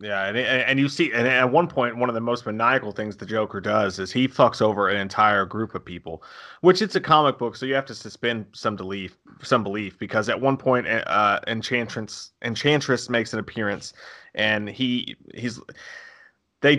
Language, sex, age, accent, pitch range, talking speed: English, male, 30-49, American, 110-135 Hz, 205 wpm